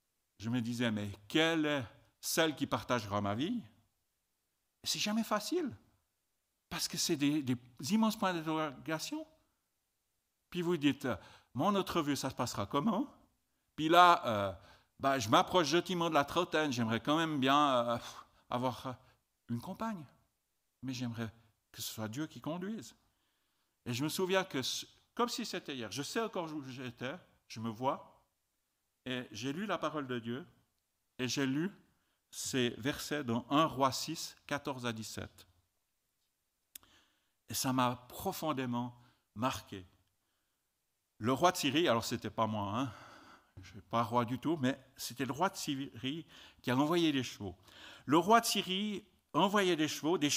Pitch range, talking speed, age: 115-165 Hz, 160 wpm, 60-79